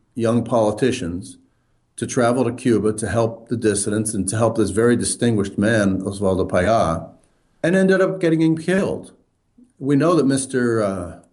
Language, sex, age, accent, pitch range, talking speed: English, male, 50-69, American, 100-125 Hz, 155 wpm